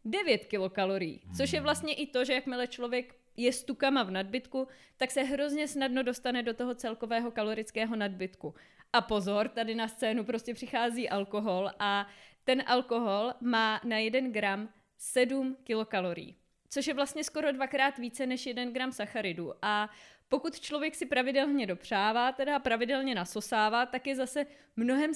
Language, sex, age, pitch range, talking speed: Czech, female, 20-39, 220-275 Hz, 155 wpm